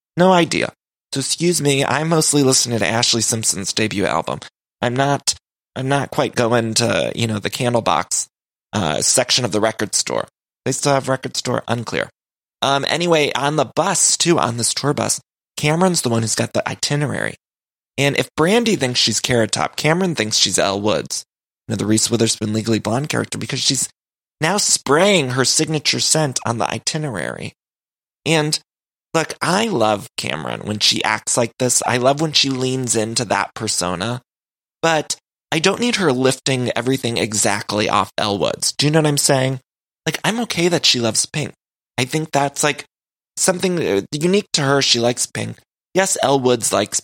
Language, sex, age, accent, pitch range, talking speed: English, male, 20-39, American, 115-150 Hz, 180 wpm